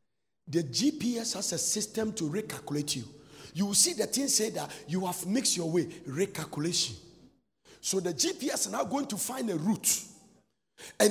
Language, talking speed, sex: English, 175 wpm, male